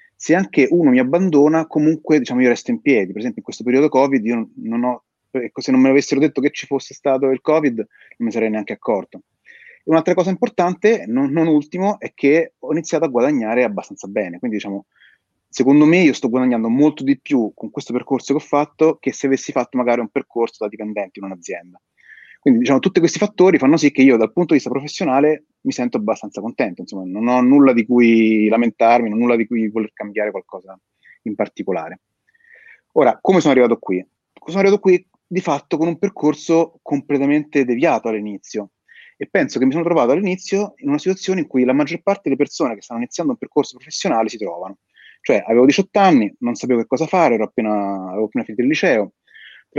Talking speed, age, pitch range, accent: 210 wpm, 30-49, 120-180 Hz, native